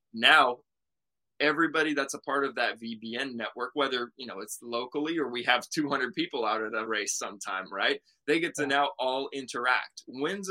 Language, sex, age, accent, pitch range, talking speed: English, male, 20-39, American, 115-145 Hz, 185 wpm